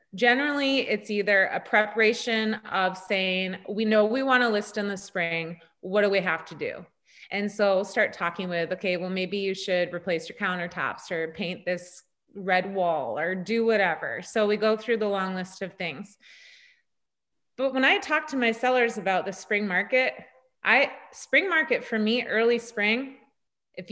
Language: English